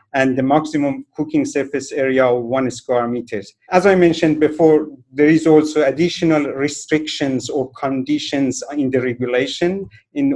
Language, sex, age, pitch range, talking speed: English, male, 50-69, 125-150 Hz, 145 wpm